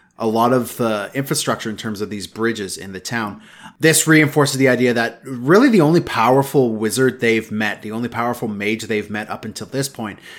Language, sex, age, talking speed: English, male, 30-49, 200 wpm